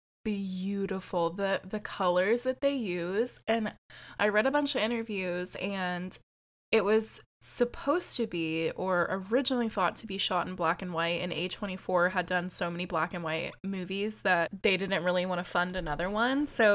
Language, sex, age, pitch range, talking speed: English, female, 20-39, 180-215 Hz, 180 wpm